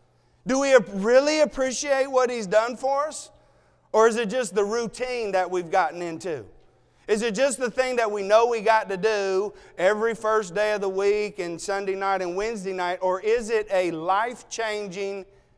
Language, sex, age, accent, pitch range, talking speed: English, male, 40-59, American, 200-265 Hz, 185 wpm